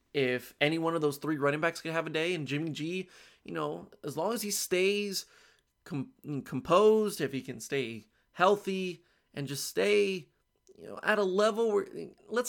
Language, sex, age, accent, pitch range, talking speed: English, male, 20-39, American, 135-175 Hz, 185 wpm